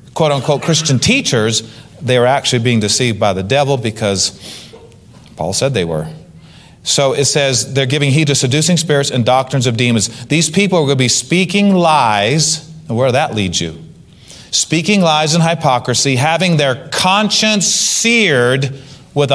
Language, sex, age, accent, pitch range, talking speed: English, male, 40-59, American, 125-170 Hz, 160 wpm